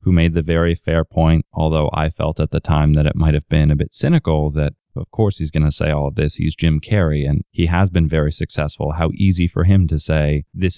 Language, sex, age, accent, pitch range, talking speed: English, male, 20-39, American, 80-90 Hz, 255 wpm